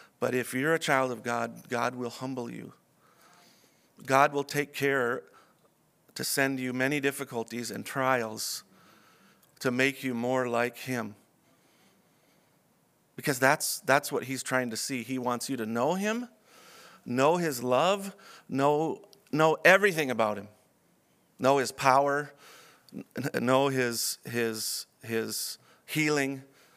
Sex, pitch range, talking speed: male, 120-140 Hz, 130 wpm